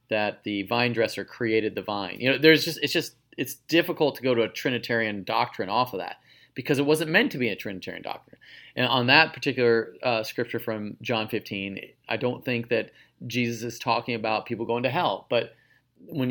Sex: male